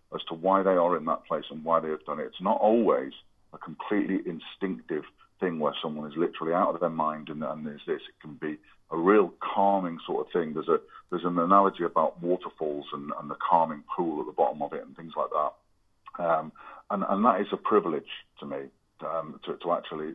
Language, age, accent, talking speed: English, 40-59, British, 225 wpm